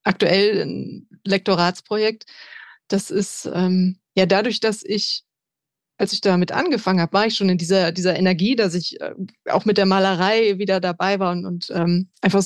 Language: German